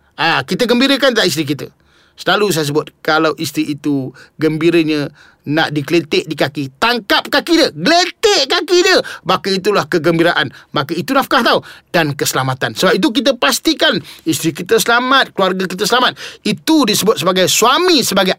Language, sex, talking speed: Malay, male, 155 wpm